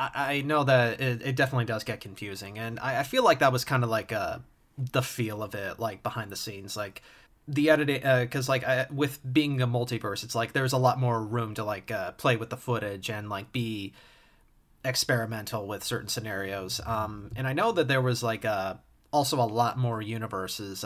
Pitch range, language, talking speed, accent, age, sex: 110-130 Hz, English, 205 wpm, American, 30-49, male